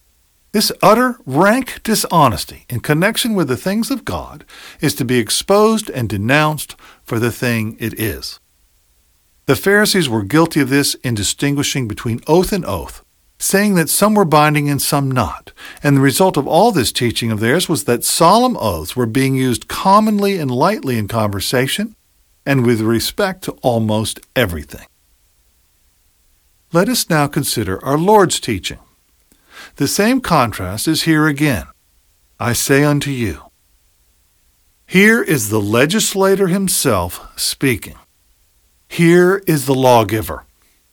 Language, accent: English, American